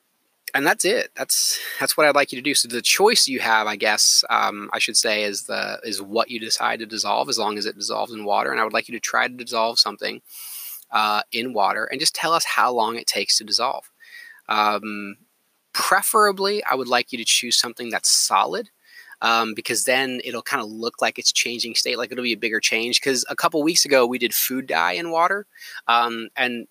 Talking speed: 225 wpm